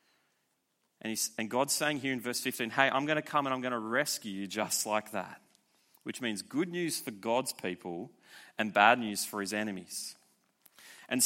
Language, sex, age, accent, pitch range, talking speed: English, male, 30-49, Australian, 135-175 Hz, 185 wpm